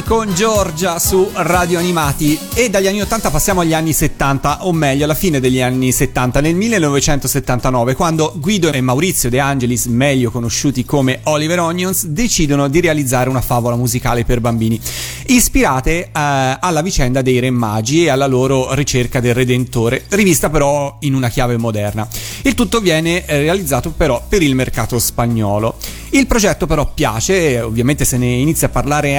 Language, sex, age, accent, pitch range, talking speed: Italian, male, 30-49, native, 125-170 Hz, 160 wpm